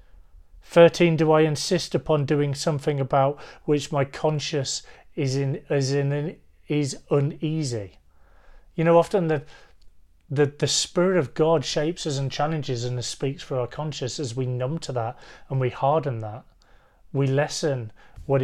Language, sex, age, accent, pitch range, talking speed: English, male, 30-49, British, 120-155 Hz, 155 wpm